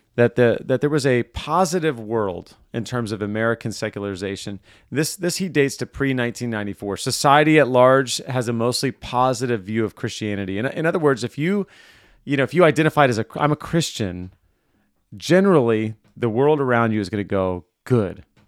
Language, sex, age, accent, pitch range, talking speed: English, male, 30-49, American, 105-135 Hz, 185 wpm